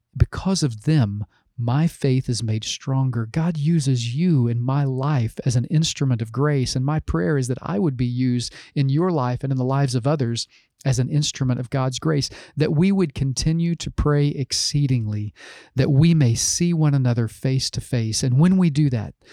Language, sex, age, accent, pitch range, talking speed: English, male, 40-59, American, 120-150 Hz, 200 wpm